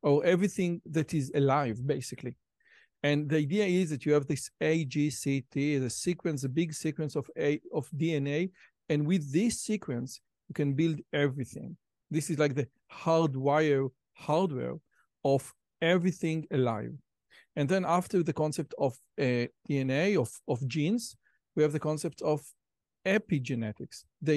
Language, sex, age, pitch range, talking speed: Hebrew, male, 50-69, 140-170 Hz, 150 wpm